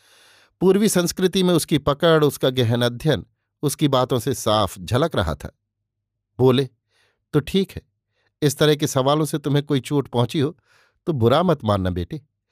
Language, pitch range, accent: Hindi, 110-145 Hz, native